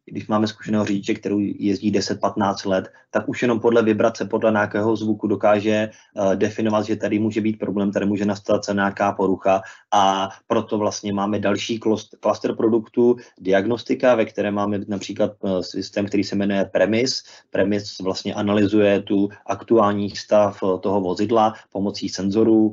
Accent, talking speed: native, 145 wpm